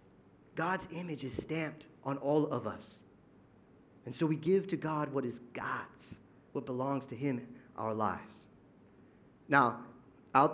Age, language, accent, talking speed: 30-49, English, American, 150 wpm